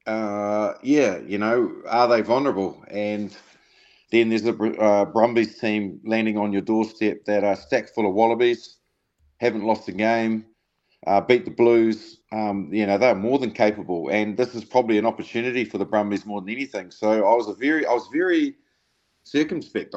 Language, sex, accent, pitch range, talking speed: English, male, Australian, 105-115 Hz, 180 wpm